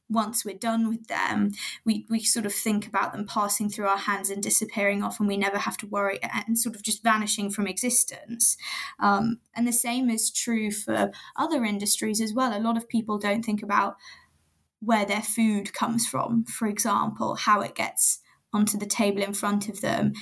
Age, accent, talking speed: 20-39, British, 200 wpm